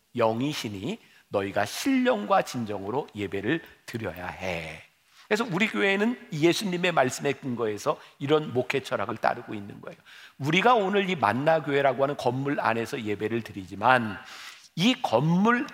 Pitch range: 120-190 Hz